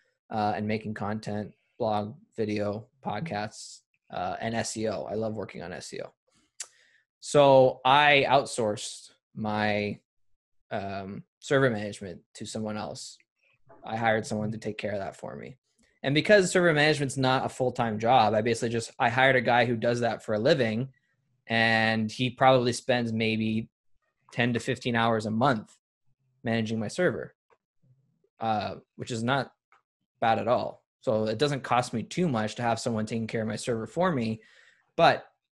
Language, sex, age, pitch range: English, male, 20-39, 105-125 Hz